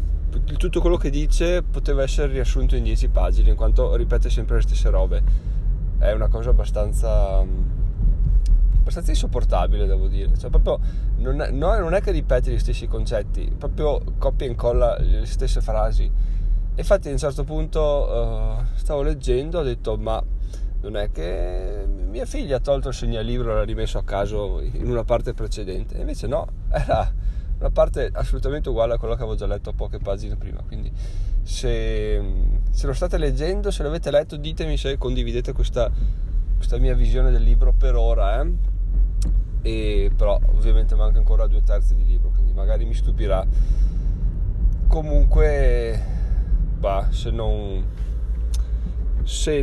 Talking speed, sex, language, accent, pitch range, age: 160 wpm, male, Italian, native, 95-120 Hz, 20-39